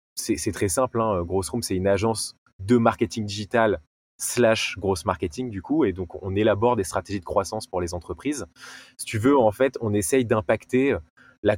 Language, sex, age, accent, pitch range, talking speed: French, male, 20-39, French, 85-105 Hz, 190 wpm